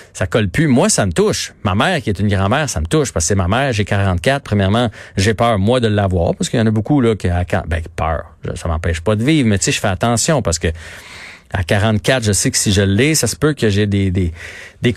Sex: male